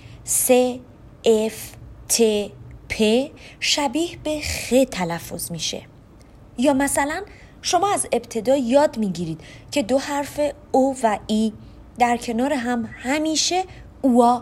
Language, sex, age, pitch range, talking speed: Persian, female, 30-49, 190-270 Hz, 110 wpm